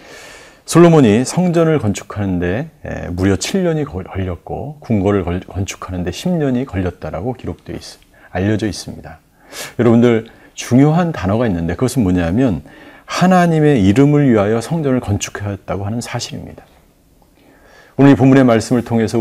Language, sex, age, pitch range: Korean, male, 40-59, 100-135 Hz